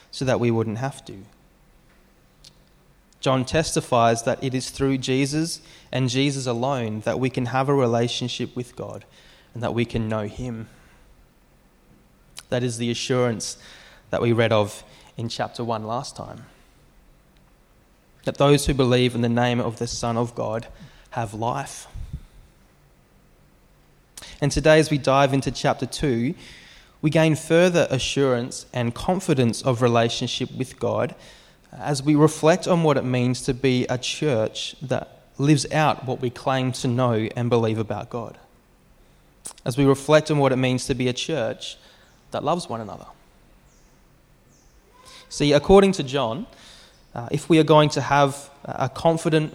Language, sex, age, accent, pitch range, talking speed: English, male, 20-39, Australian, 120-145 Hz, 150 wpm